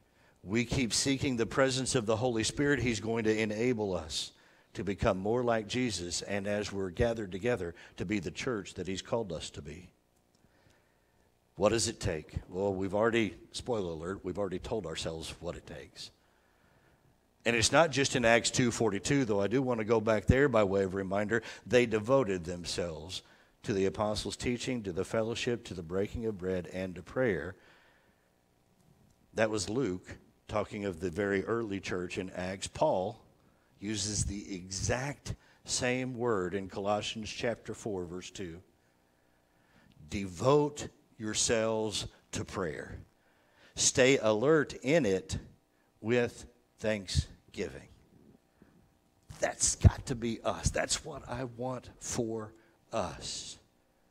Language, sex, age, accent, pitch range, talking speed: English, male, 60-79, American, 90-115 Hz, 145 wpm